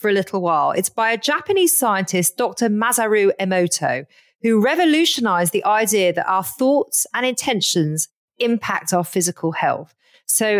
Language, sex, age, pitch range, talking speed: English, female, 40-59, 175-245 Hz, 145 wpm